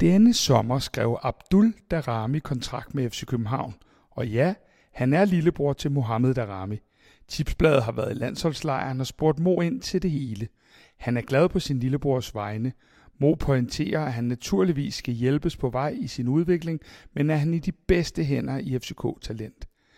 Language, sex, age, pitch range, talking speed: Danish, male, 60-79, 130-175 Hz, 170 wpm